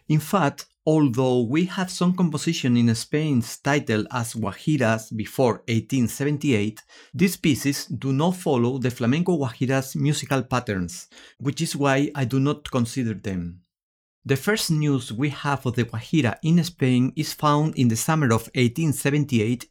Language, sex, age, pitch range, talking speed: English, male, 50-69, 115-155 Hz, 150 wpm